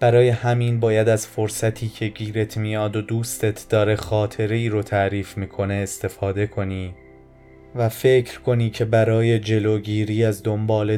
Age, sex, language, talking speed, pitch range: 20-39, male, Persian, 135 wpm, 95-110 Hz